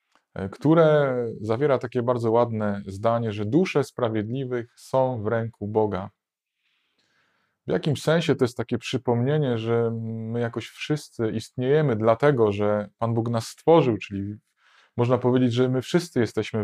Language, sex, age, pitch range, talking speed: Polish, male, 20-39, 110-130 Hz, 135 wpm